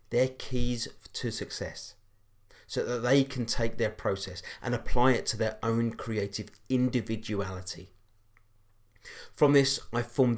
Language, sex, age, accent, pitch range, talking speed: English, male, 30-49, British, 105-135 Hz, 135 wpm